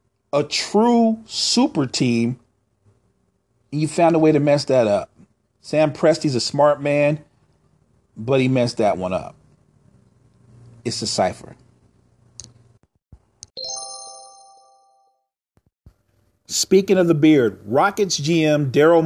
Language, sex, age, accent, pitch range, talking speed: English, male, 40-59, American, 115-145 Hz, 105 wpm